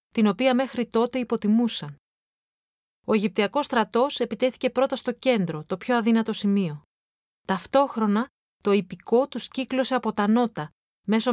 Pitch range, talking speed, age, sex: 190-245 Hz, 130 wpm, 30-49, female